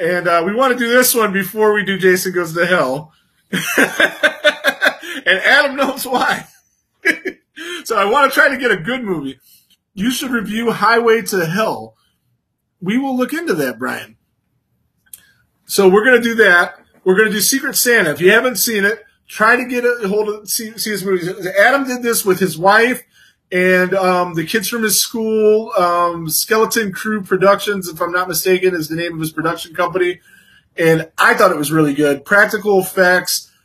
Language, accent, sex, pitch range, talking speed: English, American, male, 175-220 Hz, 185 wpm